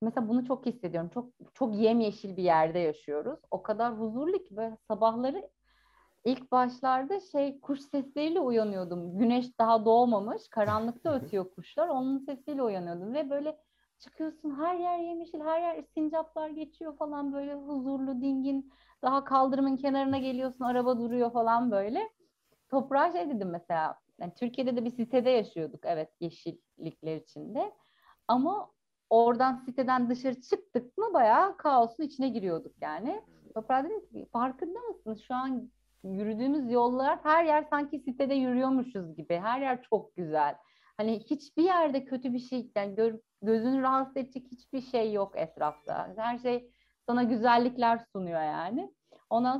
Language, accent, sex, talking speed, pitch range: Turkish, native, female, 140 wpm, 215-285 Hz